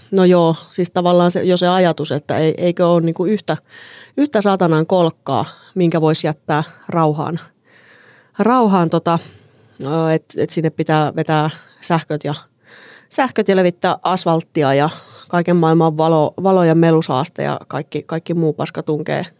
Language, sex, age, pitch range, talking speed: Finnish, female, 30-49, 160-185 Hz, 140 wpm